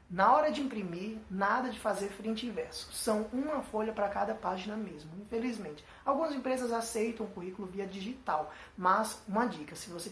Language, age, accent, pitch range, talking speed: Portuguese, 20-39, Brazilian, 180-225 Hz, 180 wpm